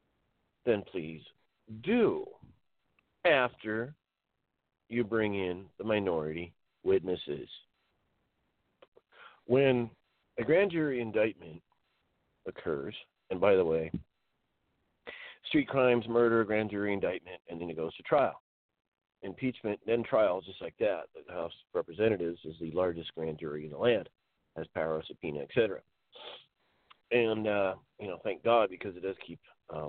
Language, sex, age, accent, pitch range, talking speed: English, male, 40-59, American, 95-130 Hz, 135 wpm